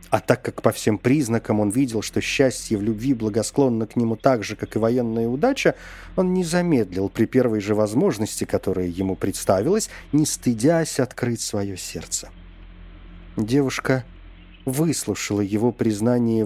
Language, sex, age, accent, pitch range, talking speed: Russian, male, 50-69, native, 90-130 Hz, 145 wpm